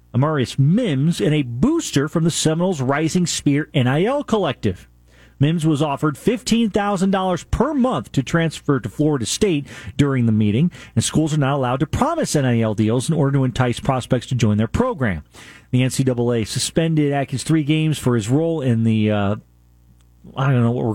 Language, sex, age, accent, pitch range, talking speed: English, male, 40-59, American, 120-155 Hz, 175 wpm